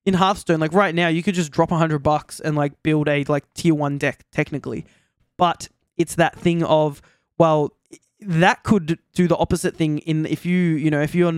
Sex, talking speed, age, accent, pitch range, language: male, 205 wpm, 20-39, Australian, 150-175 Hz, English